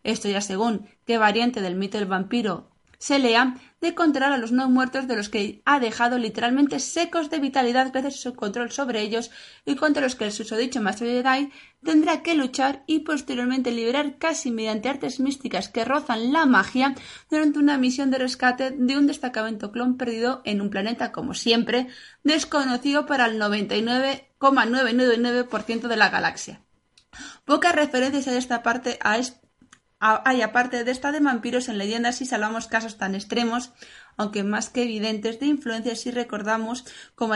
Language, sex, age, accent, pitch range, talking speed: Spanish, female, 20-39, Spanish, 220-270 Hz, 170 wpm